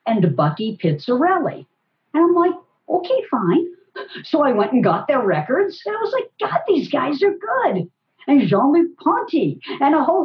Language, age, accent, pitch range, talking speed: English, 50-69, American, 190-295 Hz, 175 wpm